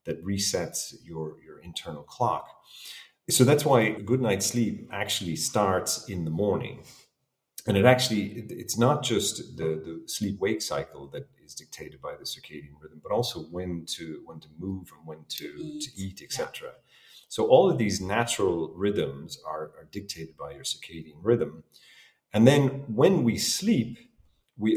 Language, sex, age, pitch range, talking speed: English, male, 40-59, 80-110 Hz, 155 wpm